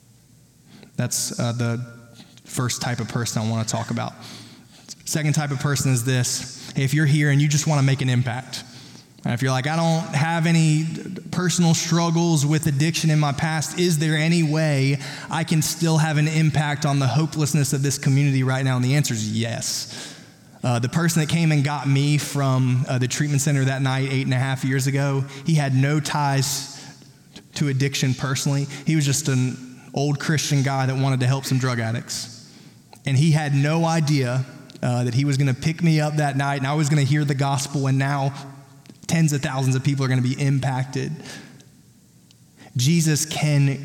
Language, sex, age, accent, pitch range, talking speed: English, male, 20-39, American, 130-155 Hz, 200 wpm